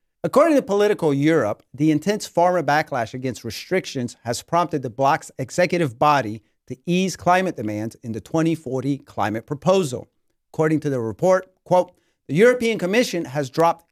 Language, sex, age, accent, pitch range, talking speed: English, male, 40-59, American, 130-175 Hz, 150 wpm